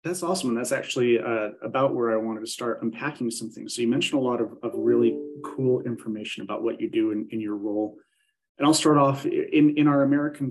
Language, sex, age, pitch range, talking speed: English, male, 30-49, 105-125 Hz, 230 wpm